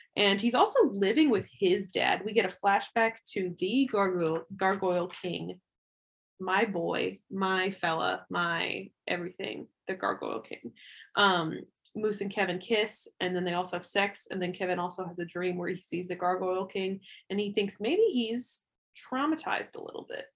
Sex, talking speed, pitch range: female, 170 wpm, 180-210 Hz